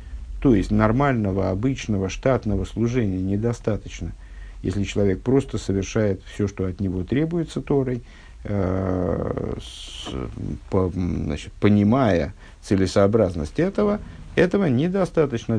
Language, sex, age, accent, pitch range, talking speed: Russian, male, 50-69, native, 90-115 Hz, 100 wpm